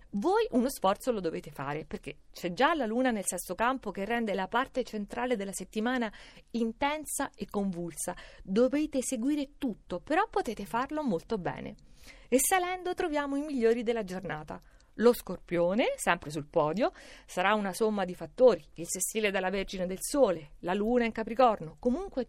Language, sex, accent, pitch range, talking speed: Italian, female, native, 200-265 Hz, 160 wpm